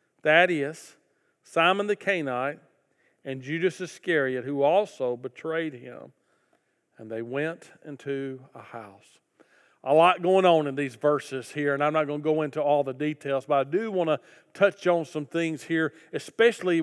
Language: English